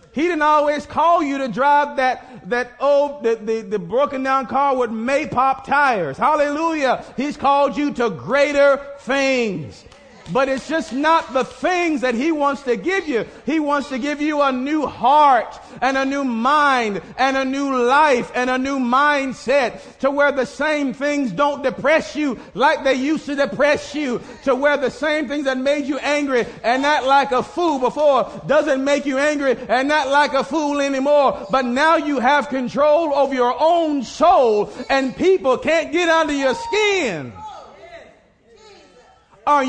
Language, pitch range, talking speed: English, 260-305 Hz, 170 wpm